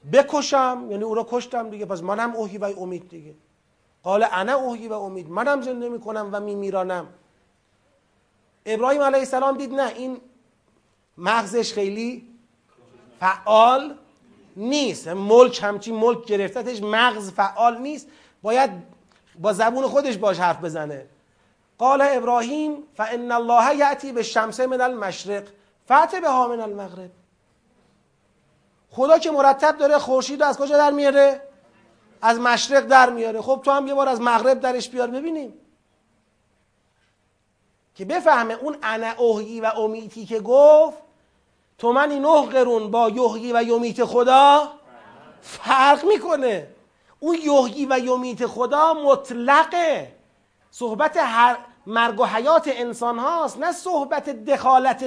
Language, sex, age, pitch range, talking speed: Persian, male, 40-59, 215-275 Hz, 130 wpm